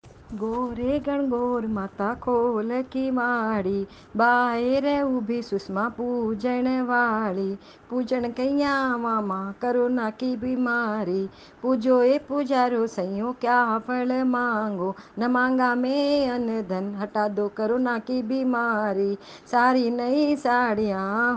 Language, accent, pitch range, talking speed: Hindi, native, 235-265 Hz, 110 wpm